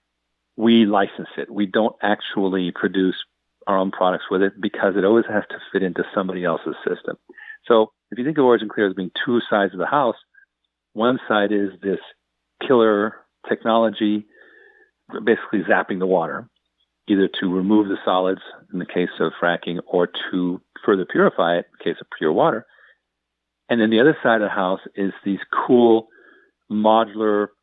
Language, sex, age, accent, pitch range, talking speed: English, male, 50-69, American, 95-110 Hz, 170 wpm